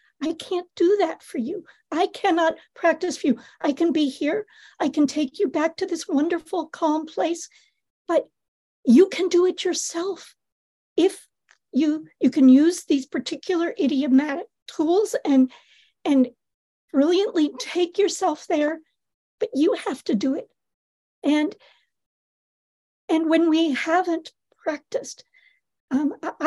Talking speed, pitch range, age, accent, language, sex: 135 wpm, 295-370 Hz, 60-79, American, English, female